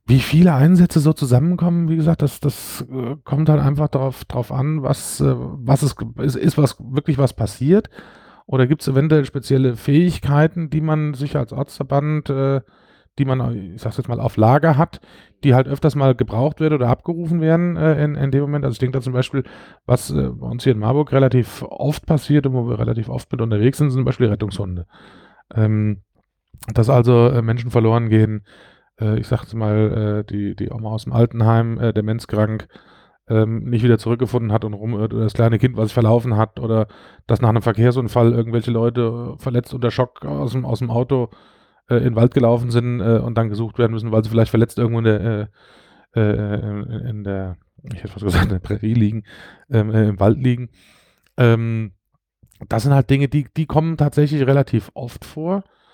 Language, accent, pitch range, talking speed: German, German, 110-140 Hz, 200 wpm